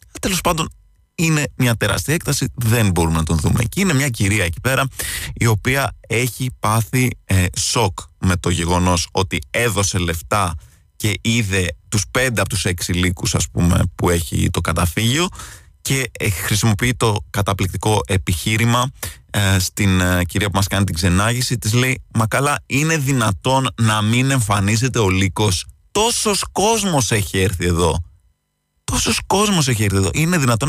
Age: 20-39